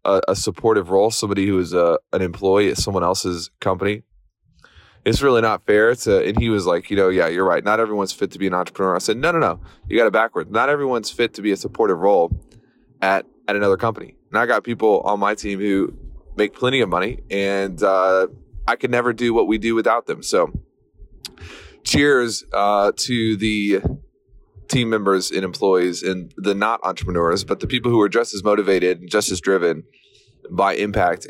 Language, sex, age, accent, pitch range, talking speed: English, male, 20-39, American, 95-120 Hz, 205 wpm